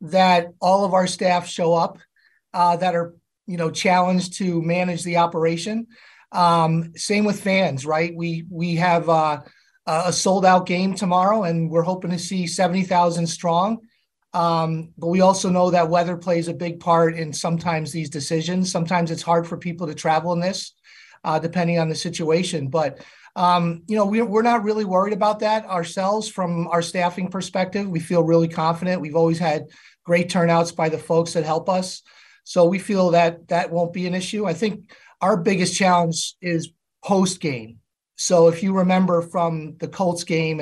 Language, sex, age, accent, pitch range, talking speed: English, male, 30-49, American, 165-185 Hz, 180 wpm